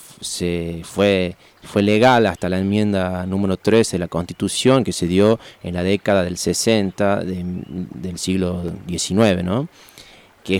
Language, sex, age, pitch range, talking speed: Spanish, male, 30-49, 90-115 Hz, 130 wpm